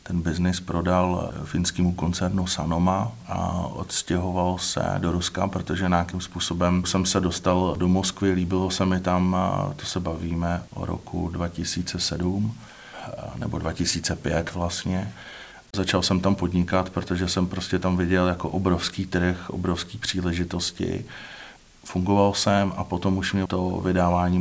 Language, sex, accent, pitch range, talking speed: Czech, male, native, 85-90 Hz, 135 wpm